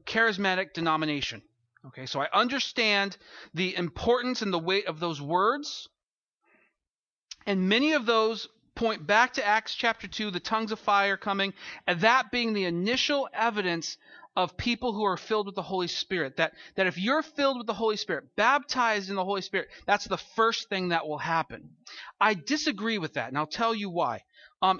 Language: English